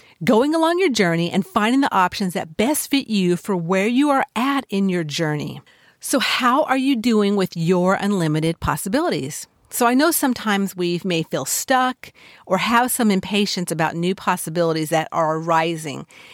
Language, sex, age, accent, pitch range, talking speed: English, female, 50-69, American, 170-225 Hz, 175 wpm